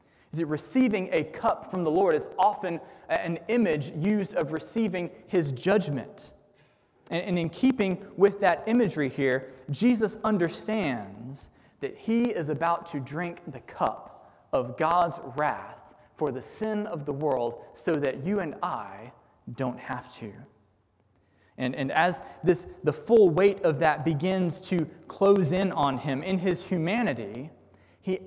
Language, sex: English, male